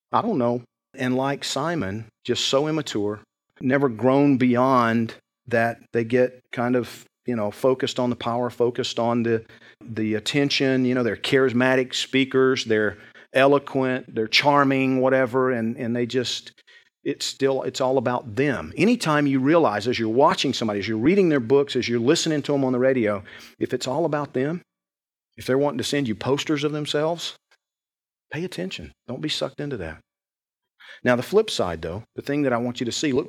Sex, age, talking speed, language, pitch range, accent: male, 40-59, 185 wpm, English, 115-140 Hz, American